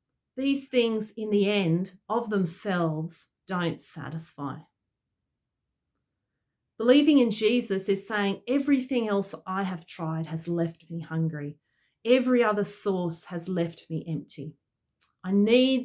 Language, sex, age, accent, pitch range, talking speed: English, female, 40-59, Australian, 165-220 Hz, 120 wpm